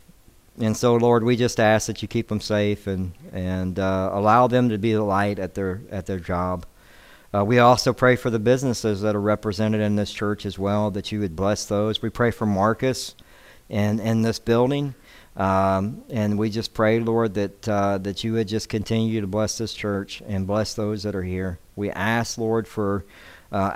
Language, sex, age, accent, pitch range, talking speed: English, male, 50-69, American, 100-120 Hz, 205 wpm